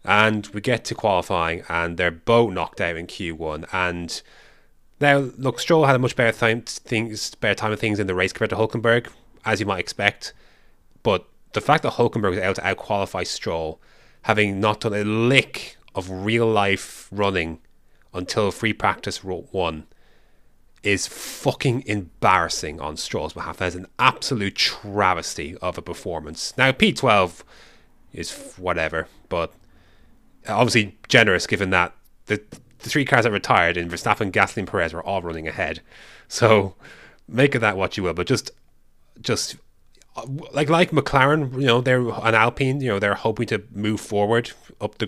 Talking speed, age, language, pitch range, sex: 160 wpm, 30-49, English, 95-120 Hz, male